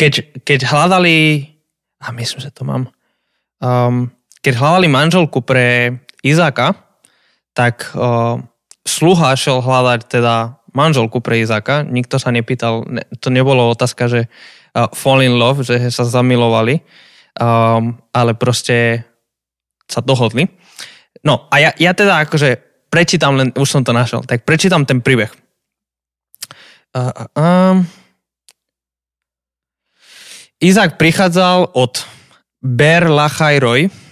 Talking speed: 115 wpm